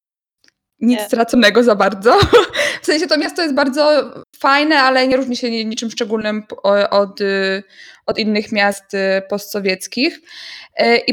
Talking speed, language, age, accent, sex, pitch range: 125 wpm, Polish, 20-39, native, female, 210-255 Hz